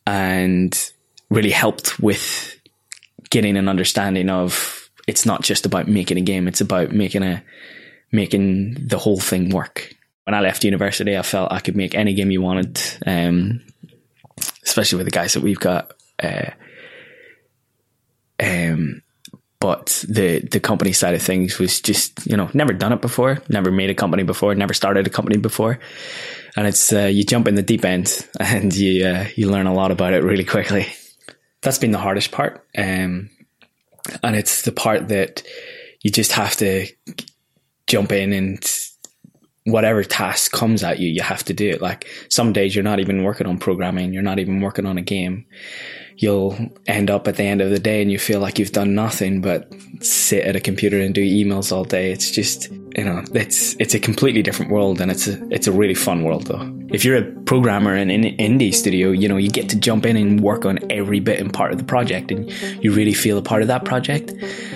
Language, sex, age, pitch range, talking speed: English, male, 10-29, 95-110 Hz, 200 wpm